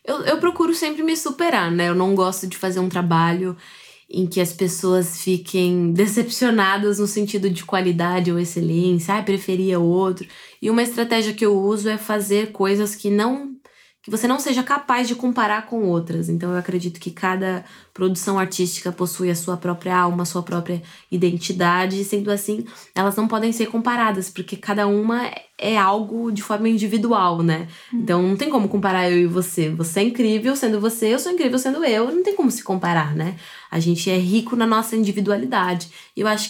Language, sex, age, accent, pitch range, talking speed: Portuguese, female, 20-39, Brazilian, 180-220 Hz, 190 wpm